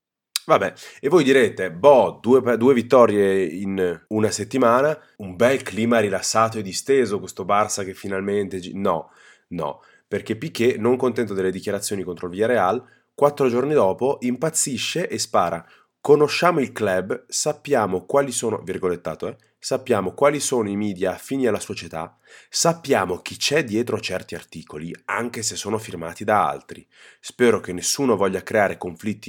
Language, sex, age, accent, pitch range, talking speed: Italian, male, 30-49, native, 90-120 Hz, 150 wpm